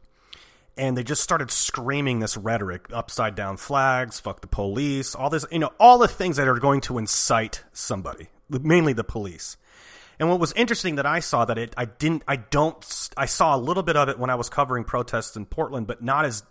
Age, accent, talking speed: 30-49, American, 215 wpm